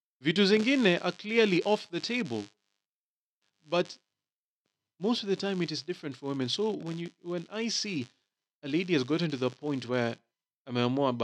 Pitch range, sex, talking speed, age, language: 130-180 Hz, male, 160 wpm, 30-49, English